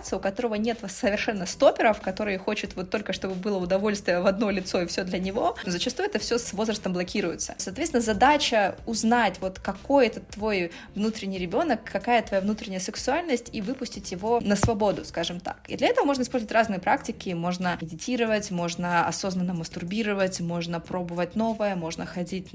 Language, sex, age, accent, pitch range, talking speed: Russian, female, 20-39, native, 185-225 Hz, 170 wpm